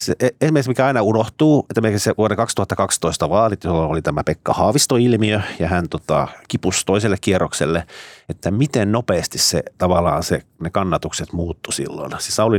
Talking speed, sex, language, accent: 155 wpm, male, Finnish, native